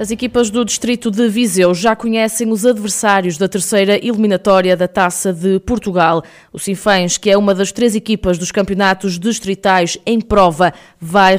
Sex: female